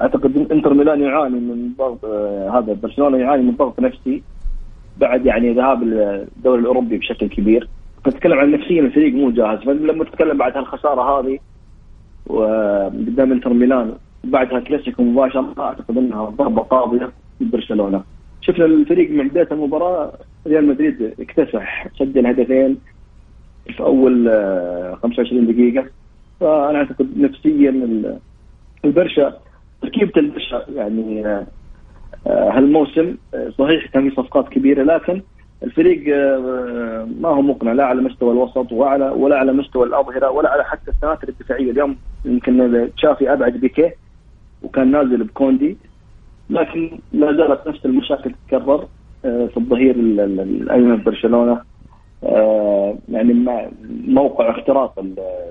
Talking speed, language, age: 120 wpm, English, 30-49